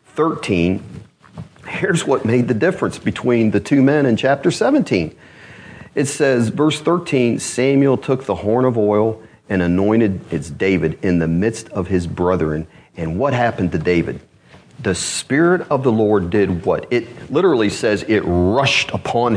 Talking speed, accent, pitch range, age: 155 wpm, American, 95-130 Hz, 40-59